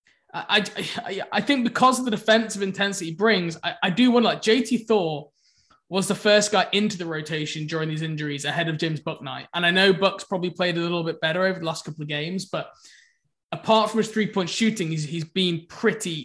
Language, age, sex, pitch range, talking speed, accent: English, 20-39, male, 160-200 Hz, 220 wpm, British